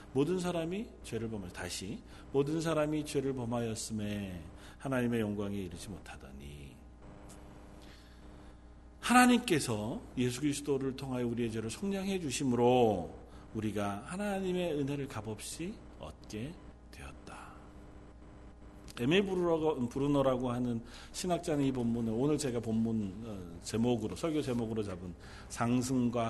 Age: 40-59